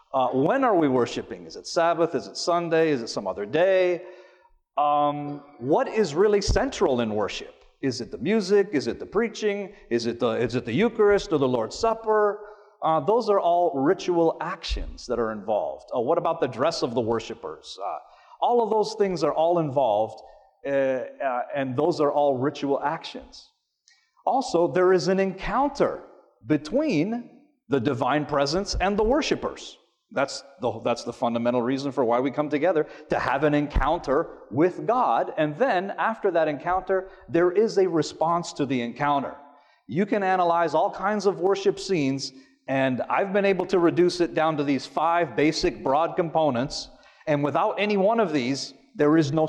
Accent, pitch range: American, 145-205 Hz